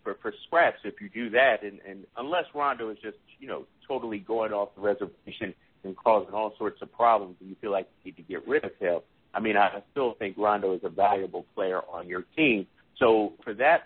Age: 50-69